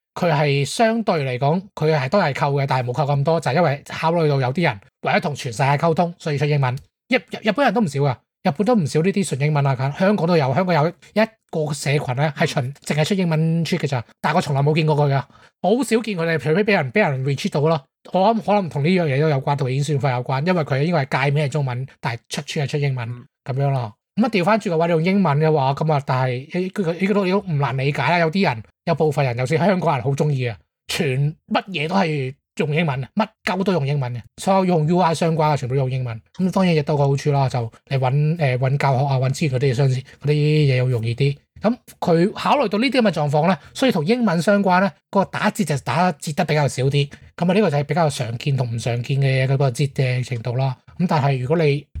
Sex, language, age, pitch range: male, English, 20-39, 140-180 Hz